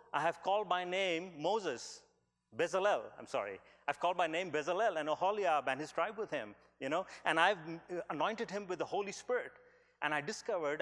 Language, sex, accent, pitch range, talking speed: English, male, Indian, 145-200 Hz, 190 wpm